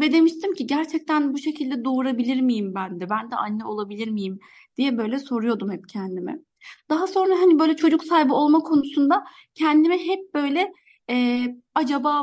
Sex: female